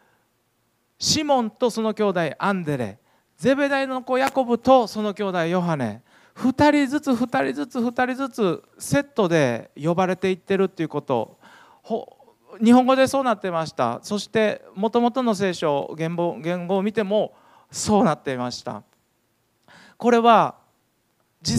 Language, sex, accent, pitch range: Japanese, male, native, 175-255 Hz